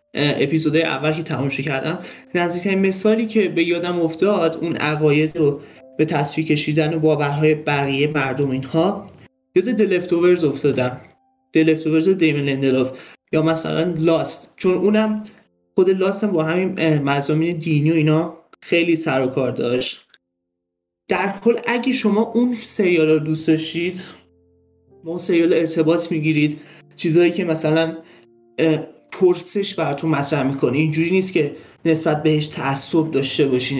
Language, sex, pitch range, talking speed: Persian, male, 145-180 Hz, 130 wpm